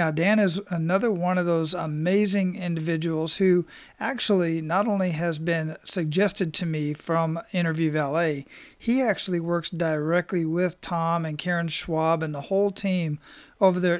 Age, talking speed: 40-59, 155 wpm